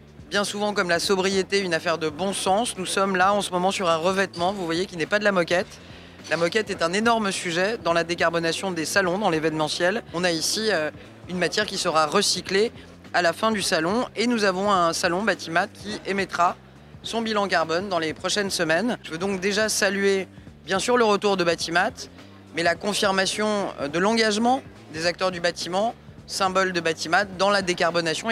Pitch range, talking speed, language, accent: 165-200 Hz, 200 wpm, French, French